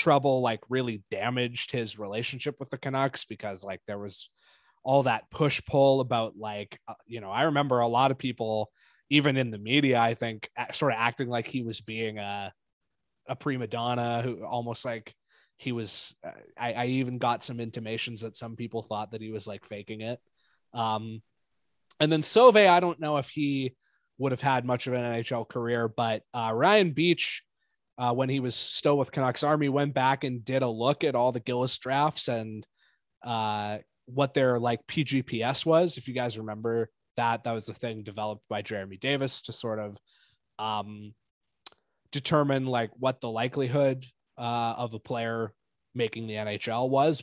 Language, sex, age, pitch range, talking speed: English, male, 20-39, 110-135 Hz, 180 wpm